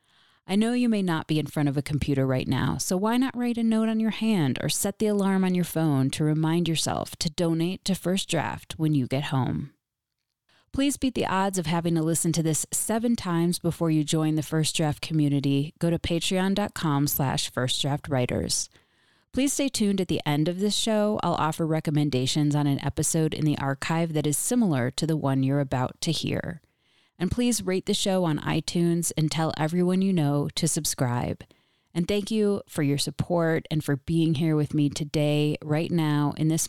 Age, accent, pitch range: 30-49, American, 145-180 Hz